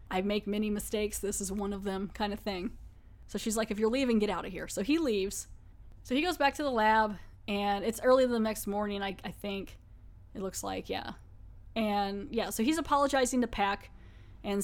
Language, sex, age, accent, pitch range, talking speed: English, female, 10-29, American, 190-225 Hz, 215 wpm